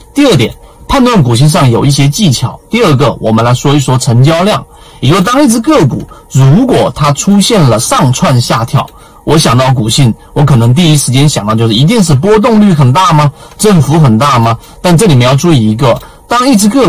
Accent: native